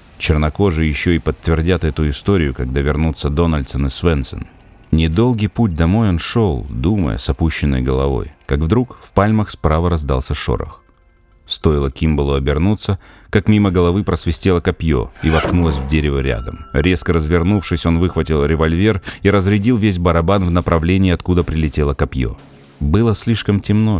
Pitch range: 75-95 Hz